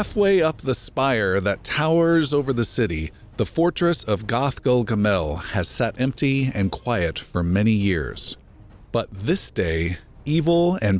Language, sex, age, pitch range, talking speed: English, male, 40-59, 100-130 Hz, 145 wpm